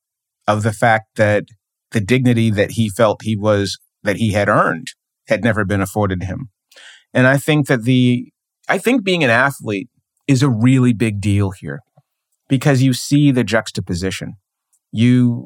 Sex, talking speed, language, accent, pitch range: male, 165 wpm, English, American, 100-125 Hz